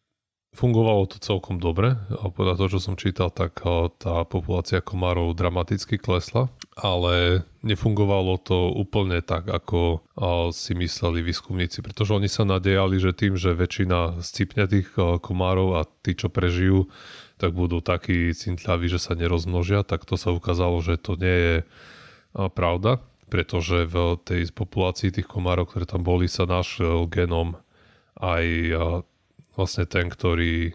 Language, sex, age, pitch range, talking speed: Slovak, male, 20-39, 85-100 Hz, 140 wpm